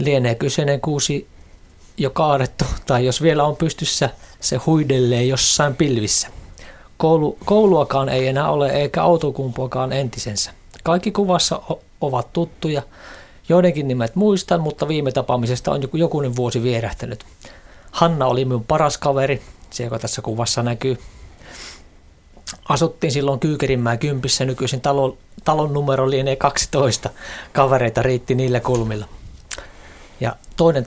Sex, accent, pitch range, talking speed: male, native, 115-145 Hz, 125 wpm